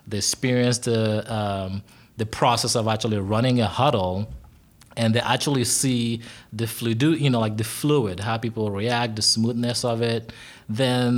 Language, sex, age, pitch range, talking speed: English, male, 20-39, 105-125 Hz, 160 wpm